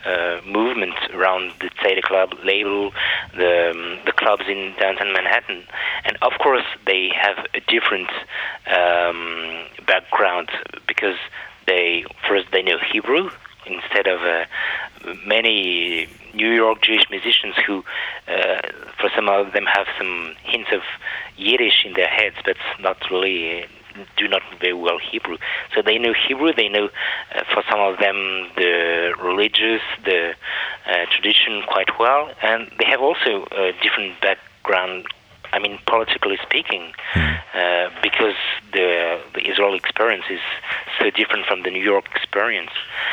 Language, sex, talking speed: German, male, 140 wpm